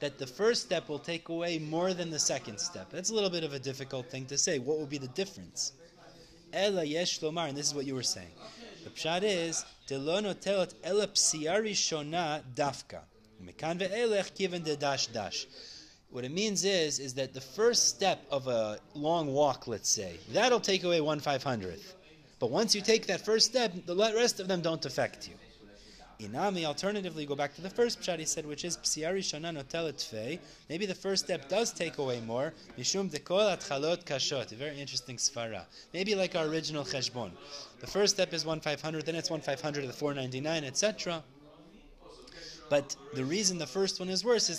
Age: 30-49